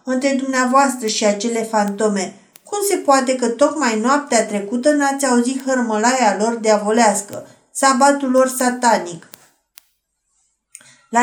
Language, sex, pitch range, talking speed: Romanian, female, 210-275 Hz, 110 wpm